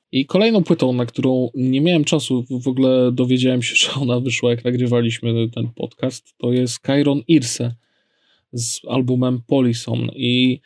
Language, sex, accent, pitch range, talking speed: Polish, male, native, 120-130 Hz, 150 wpm